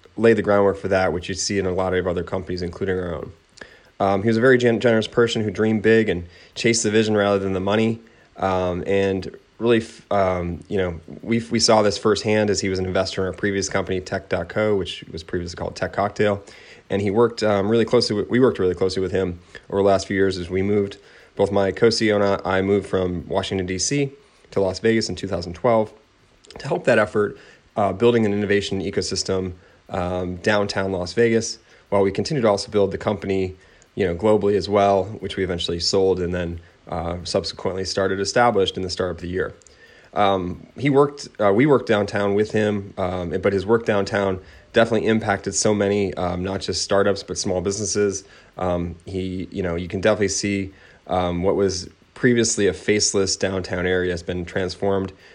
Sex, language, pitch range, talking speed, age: male, English, 90-105 Hz, 200 wpm, 30-49